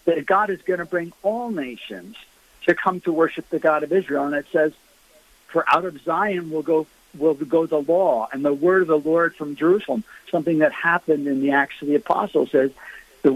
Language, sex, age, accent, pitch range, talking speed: English, male, 60-79, American, 155-185 Hz, 215 wpm